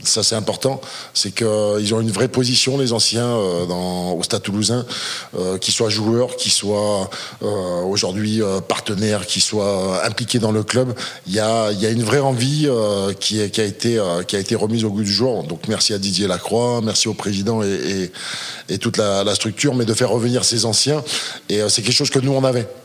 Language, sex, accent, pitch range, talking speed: French, male, French, 105-120 Hz, 230 wpm